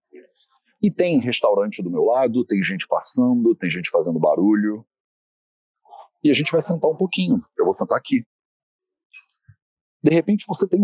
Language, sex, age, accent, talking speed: English, male, 40-59, Brazilian, 155 wpm